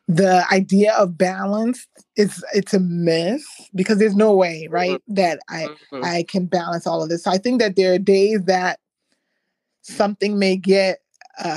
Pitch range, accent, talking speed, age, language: 175-205 Hz, American, 170 wpm, 20-39, English